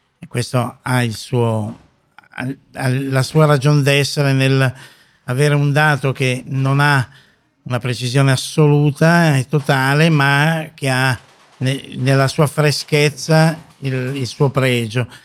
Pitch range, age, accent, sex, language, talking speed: 130-145 Hz, 50-69, native, male, Italian, 120 wpm